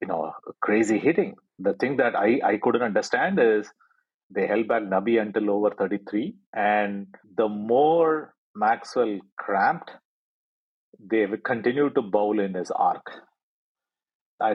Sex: male